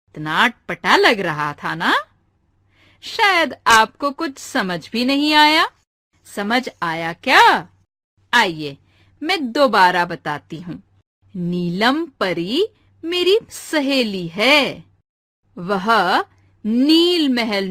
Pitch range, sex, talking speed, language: 180-300 Hz, female, 100 wpm, Hindi